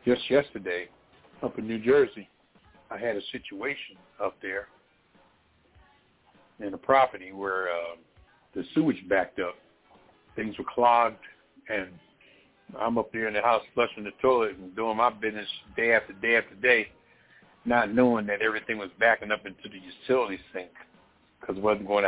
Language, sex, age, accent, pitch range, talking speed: English, male, 60-79, American, 95-130 Hz, 160 wpm